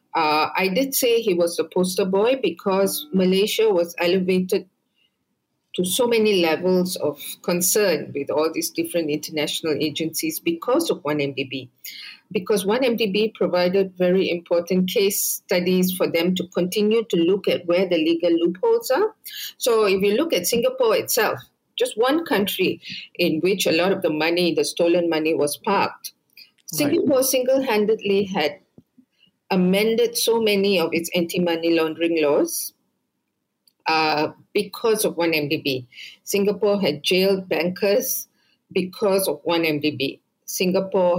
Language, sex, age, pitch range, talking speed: English, female, 50-69, 170-215 Hz, 135 wpm